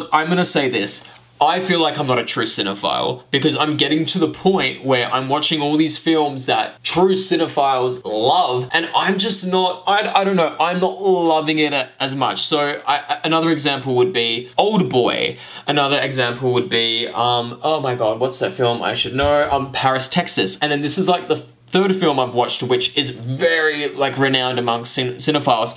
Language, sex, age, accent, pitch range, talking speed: English, male, 20-39, Australian, 130-180 Hz, 195 wpm